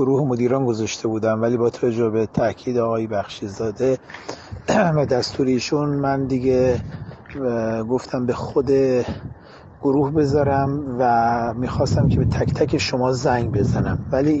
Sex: male